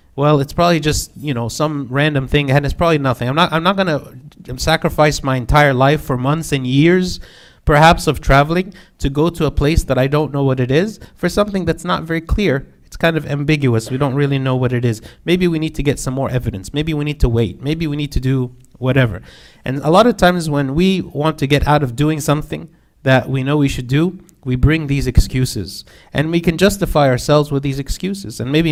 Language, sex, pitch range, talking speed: English, male, 130-155 Hz, 230 wpm